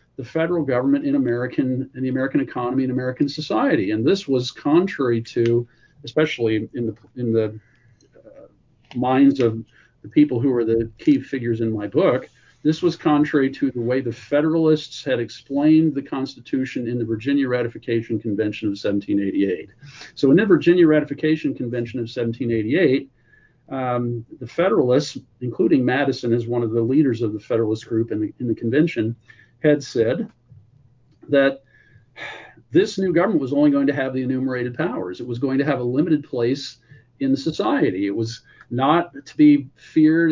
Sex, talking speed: male, 165 wpm